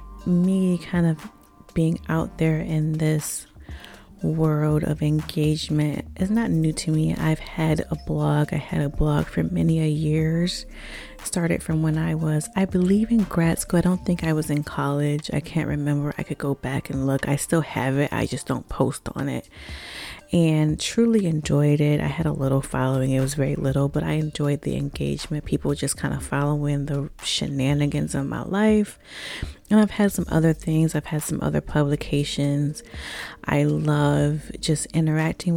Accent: American